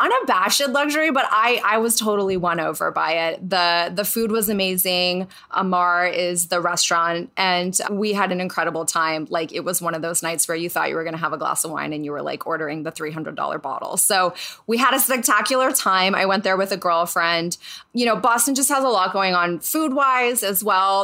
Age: 20-39